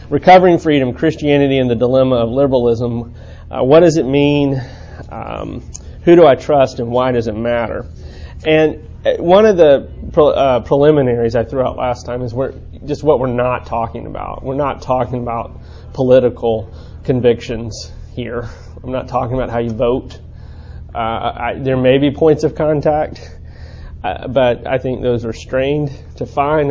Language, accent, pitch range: English, American, 115-140 Hz